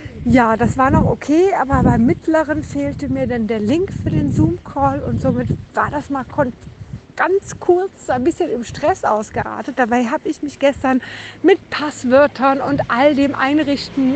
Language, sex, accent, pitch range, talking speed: German, female, German, 235-295 Hz, 165 wpm